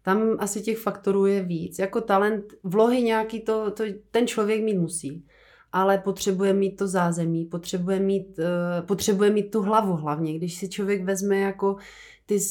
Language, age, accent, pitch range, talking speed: Czech, 30-49, native, 185-210 Hz, 165 wpm